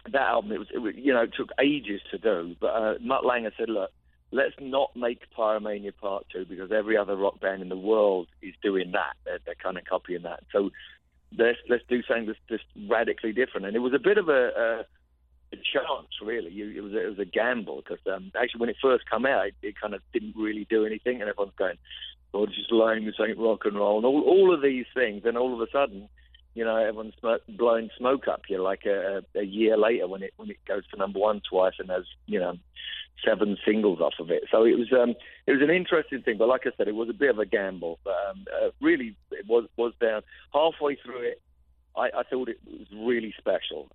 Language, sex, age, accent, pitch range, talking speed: English, male, 50-69, British, 95-125 Hz, 240 wpm